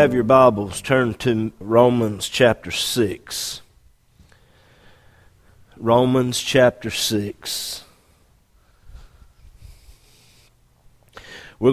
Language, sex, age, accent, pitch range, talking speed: English, male, 50-69, American, 105-135 Hz, 60 wpm